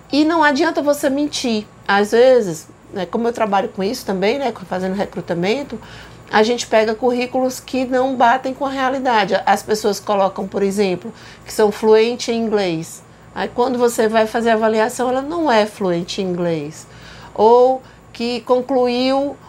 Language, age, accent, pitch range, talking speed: Portuguese, 50-69, Brazilian, 210-265 Hz, 165 wpm